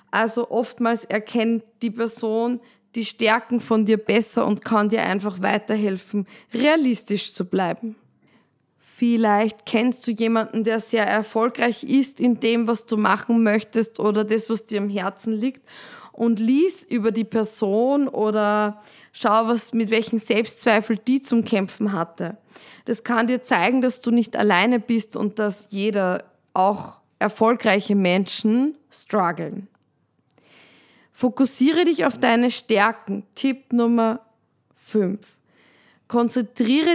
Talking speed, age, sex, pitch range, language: 130 wpm, 20-39, female, 210-240 Hz, German